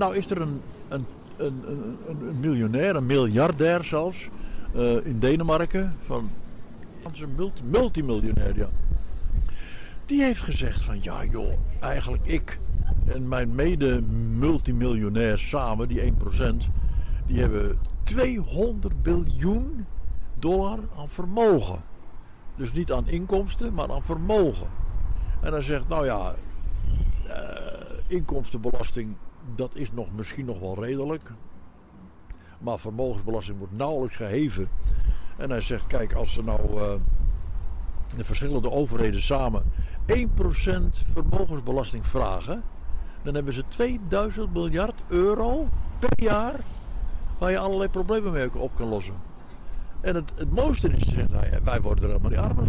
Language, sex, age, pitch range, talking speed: Dutch, male, 60-79, 90-145 Hz, 125 wpm